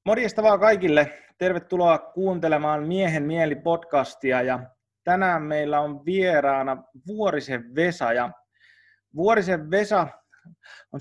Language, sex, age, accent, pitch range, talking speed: Finnish, male, 30-49, native, 140-185 Hz, 100 wpm